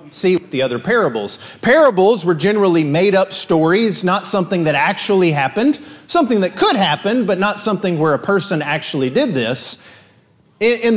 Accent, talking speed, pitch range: American, 155 wpm, 160-220 Hz